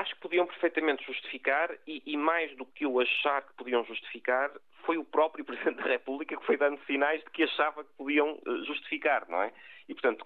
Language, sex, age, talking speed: Portuguese, male, 40-59, 205 wpm